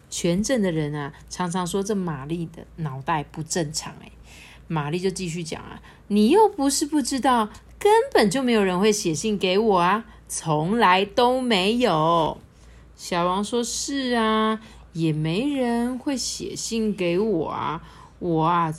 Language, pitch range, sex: Chinese, 170-260 Hz, female